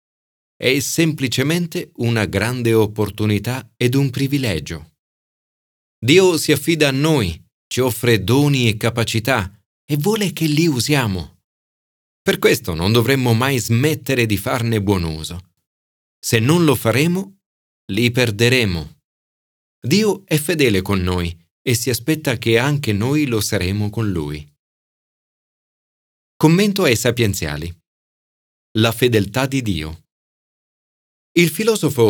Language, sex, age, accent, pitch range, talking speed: Italian, male, 40-59, native, 95-140 Hz, 120 wpm